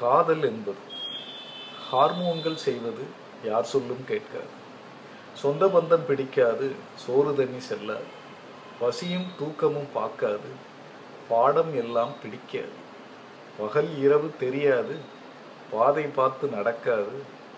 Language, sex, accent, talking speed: Tamil, male, native, 80 wpm